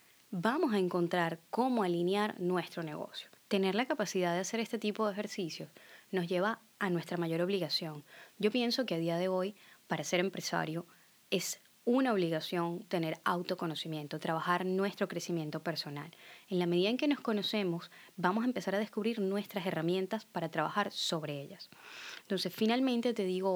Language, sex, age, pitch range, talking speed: Spanish, female, 20-39, 170-210 Hz, 160 wpm